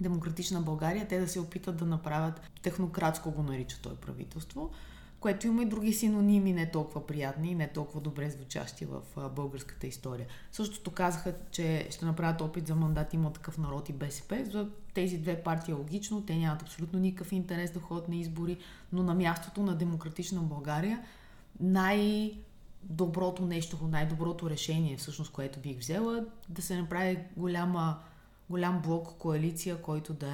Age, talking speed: 20-39, 160 wpm